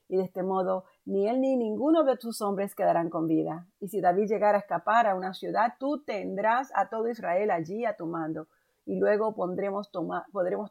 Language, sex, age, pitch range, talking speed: Spanish, female, 40-59, 175-225 Hz, 195 wpm